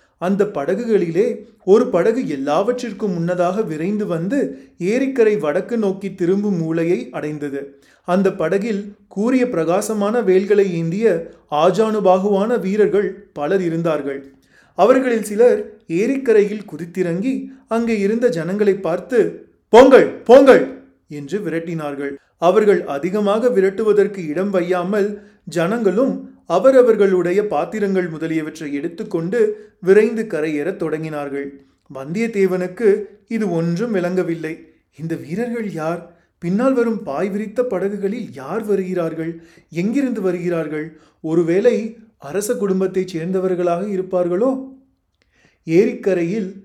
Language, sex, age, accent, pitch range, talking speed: Tamil, male, 30-49, native, 165-215 Hz, 95 wpm